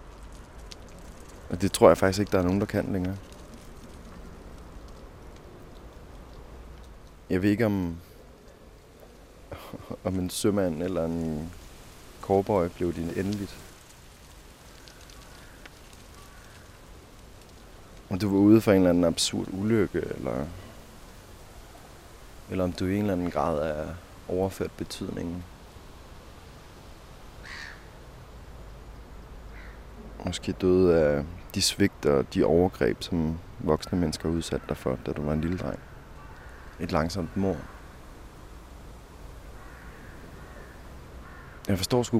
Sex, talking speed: male, 105 wpm